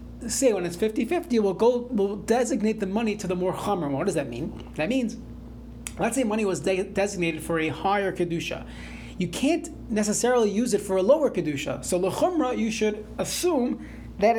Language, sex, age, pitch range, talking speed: English, male, 30-49, 175-235 Hz, 190 wpm